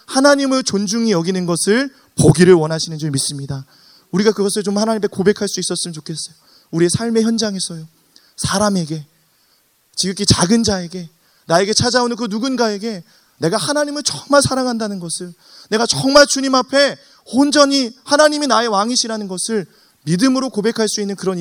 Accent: native